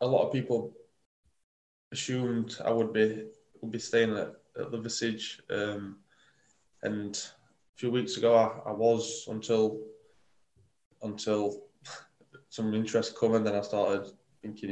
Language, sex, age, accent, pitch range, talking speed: English, male, 20-39, British, 105-115 Hz, 140 wpm